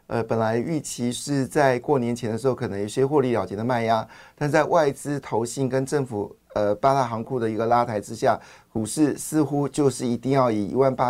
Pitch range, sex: 115-140 Hz, male